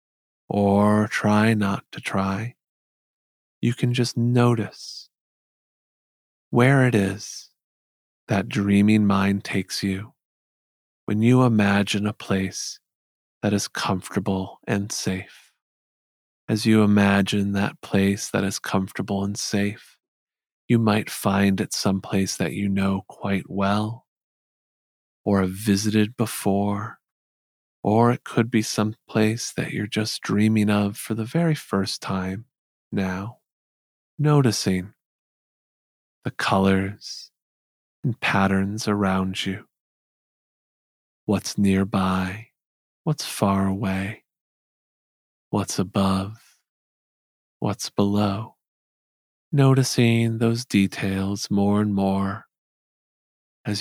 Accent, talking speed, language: American, 100 wpm, English